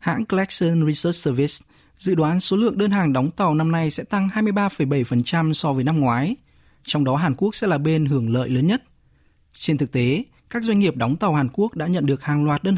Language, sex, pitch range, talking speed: Vietnamese, male, 125-170 Hz, 225 wpm